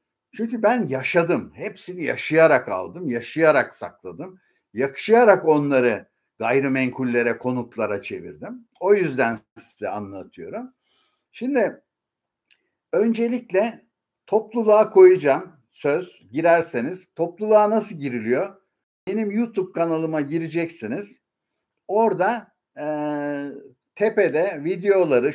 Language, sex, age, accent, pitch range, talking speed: Turkish, male, 60-79, native, 150-210 Hz, 80 wpm